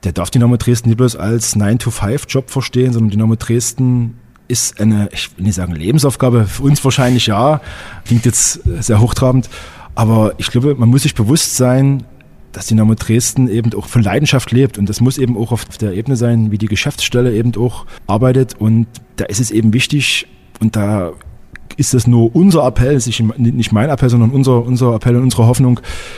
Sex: male